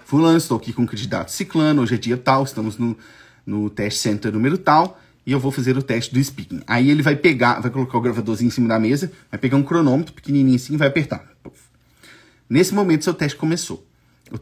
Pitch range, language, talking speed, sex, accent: 125-160 Hz, English, 220 wpm, male, Brazilian